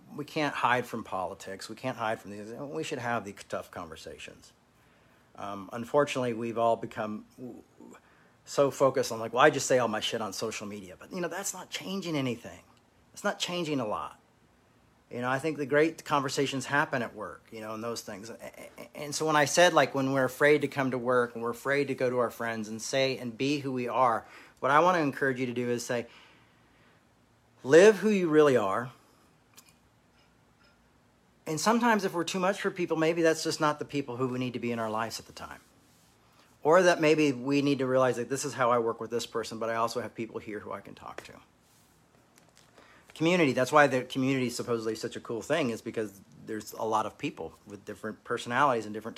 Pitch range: 115-145 Hz